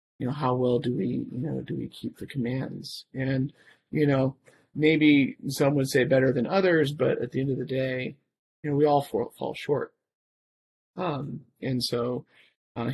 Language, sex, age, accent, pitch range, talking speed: English, male, 30-49, American, 120-135 Hz, 190 wpm